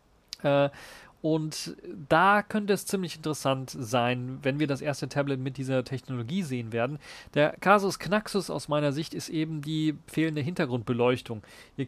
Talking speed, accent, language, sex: 150 wpm, German, German, male